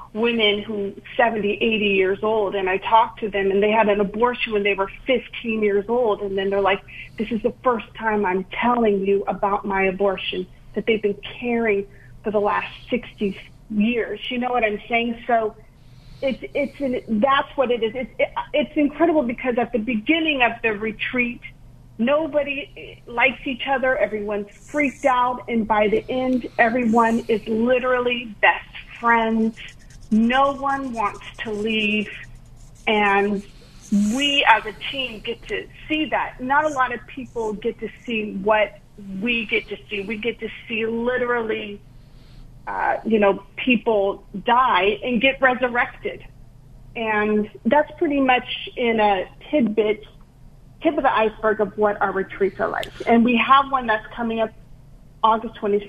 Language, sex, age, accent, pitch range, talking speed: English, female, 40-59, American, 205-245 Hz, 160 wpm